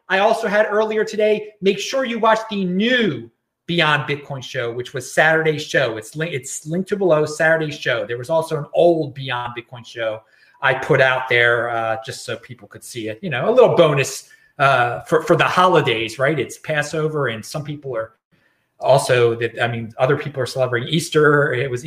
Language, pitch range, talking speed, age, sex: English, 145-205 Hz, 200 wpm, 30-49, male